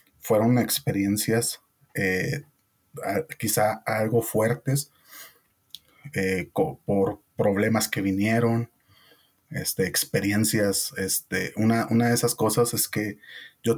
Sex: male